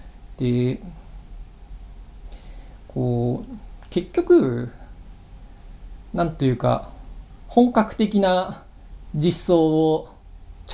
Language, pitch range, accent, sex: Japanese, 120-185 Hz, native, male